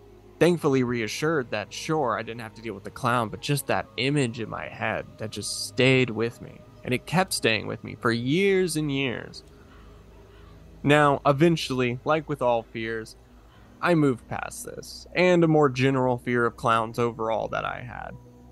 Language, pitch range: English, 115-140 Hz